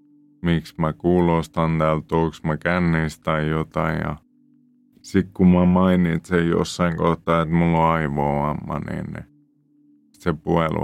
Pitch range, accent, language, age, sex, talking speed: 75-110 Hz, native, Finnish, 30-49, male, 115 wpm